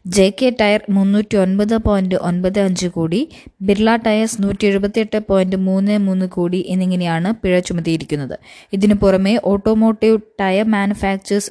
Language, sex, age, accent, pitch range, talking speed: Malayalam, female, 20-39, native, 185-215 Hz, 130 wpm